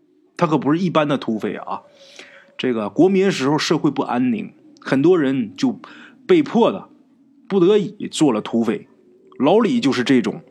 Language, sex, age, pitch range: Chinese, male, 20-39, 140-235 Hz